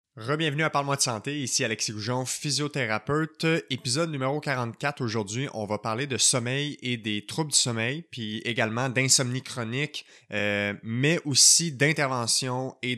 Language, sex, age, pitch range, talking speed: French, male, 20-39, 110-135 Hz, 150 wpm